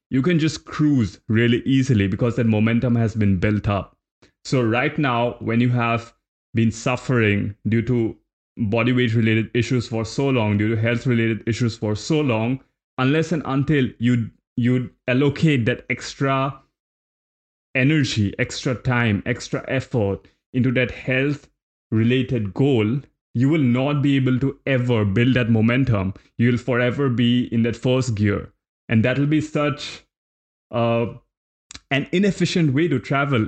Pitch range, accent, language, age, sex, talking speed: 115-140 Hz, Indian, English, 20-39, male, 150 wpm